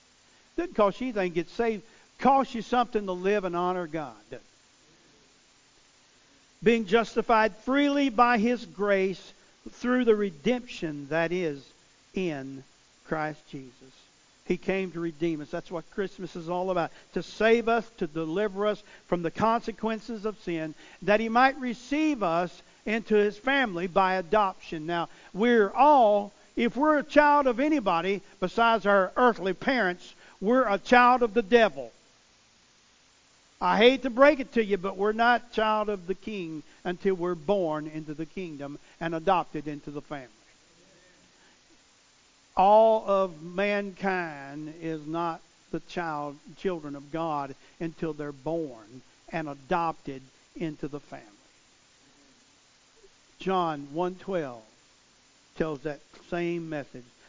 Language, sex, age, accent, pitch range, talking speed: English, male, 50-69, American, 160-225 Hz, 135 wpm